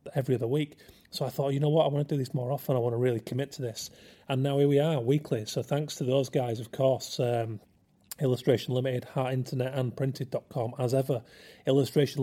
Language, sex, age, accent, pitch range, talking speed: English, male, 30-49, British, 125-145 Hz, 220 wpm